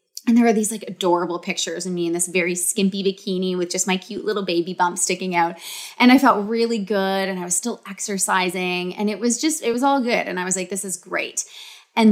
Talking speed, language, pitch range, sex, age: 245 wpm, English, 175-220 Hz, female, 20-39